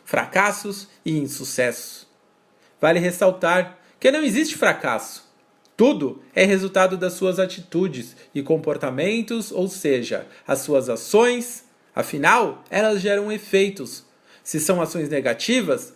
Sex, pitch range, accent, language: male, 160-220 Hz, Brazilian, Portuguese